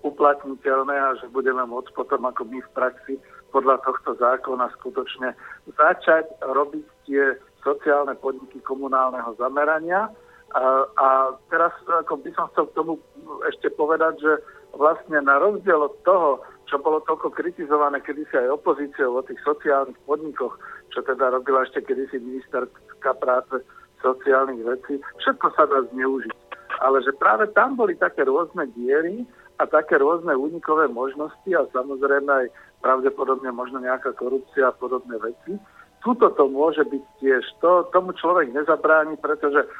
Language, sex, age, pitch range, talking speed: Slovak, male, 60-79, 130-160 Hz, 140 wpm